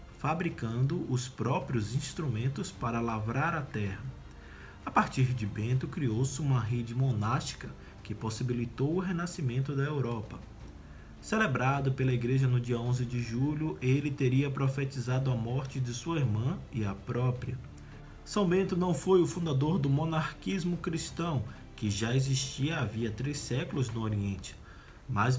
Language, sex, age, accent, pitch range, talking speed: Portuguese, male, 20-39, Brazilian, 115-145 Hz, 140 wpm